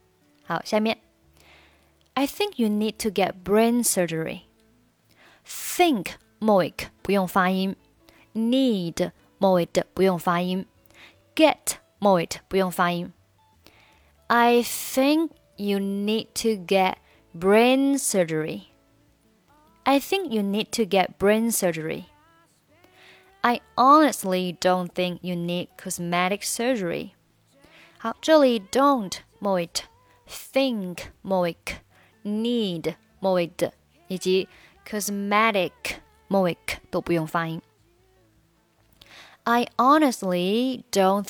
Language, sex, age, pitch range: Chinese, female, 20-39, 170-220 Hz